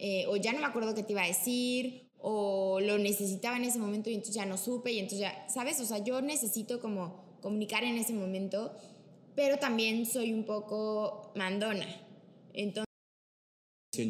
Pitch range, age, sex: 200-255 Hz, 20-39, female